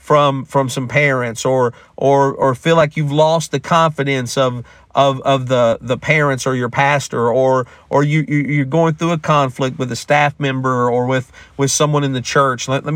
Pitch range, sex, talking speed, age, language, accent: 95-145 Hz, male, 200 wpm, 50-69, English, American